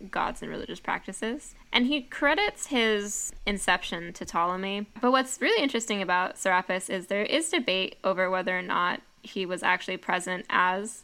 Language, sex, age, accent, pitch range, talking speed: English, female, 10-29, American, 190-250 Hz, 165 wpm